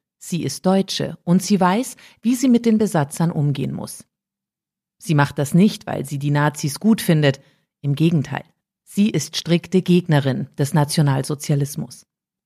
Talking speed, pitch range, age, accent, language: 150 wpm, 155-205 Hz, 40-59, German, German